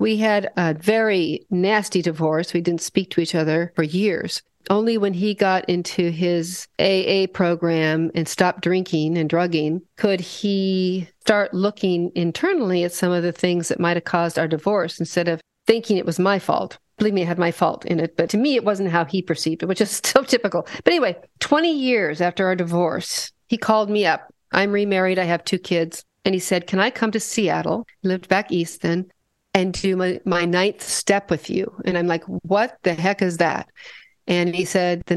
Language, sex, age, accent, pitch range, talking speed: English, female, 40-59, American, 175-200 Hz, 205 wpm